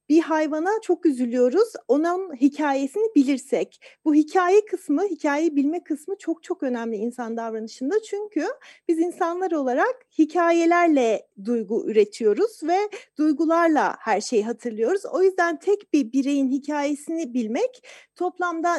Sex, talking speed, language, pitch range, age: female, 120 wpm, Turkish, 265-340 Hz, 40-59